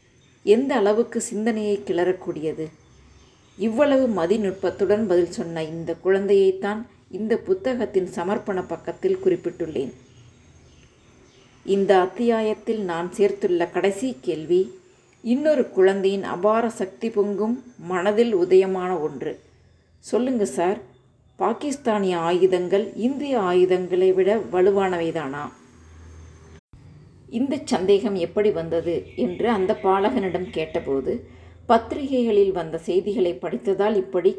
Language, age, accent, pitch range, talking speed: Tamil, 30-49, native, 175-220 Hz, 85 wpm